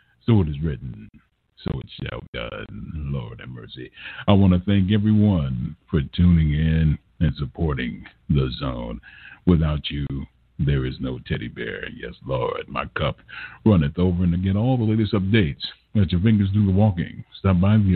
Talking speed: 175 wpm